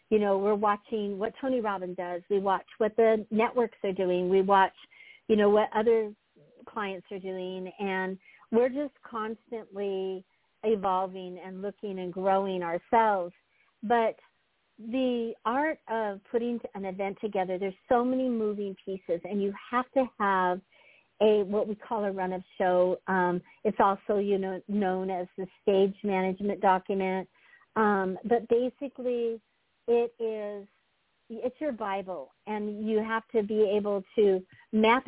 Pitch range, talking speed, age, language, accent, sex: 190-225 Hz, 150 wpm, 50-69, English, American, female